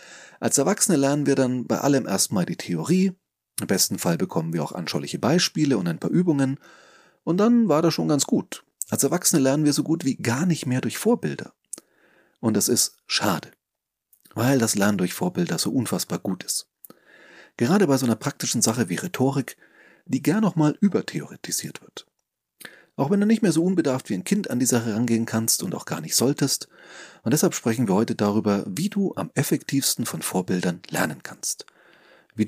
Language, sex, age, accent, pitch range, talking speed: German, male, 30-49, German, 110-165 Hz, 190 wpm